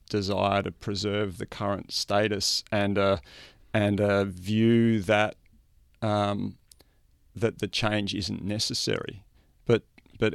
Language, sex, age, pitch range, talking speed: English, male, 40-59, 95-115 Hz, 115 wpm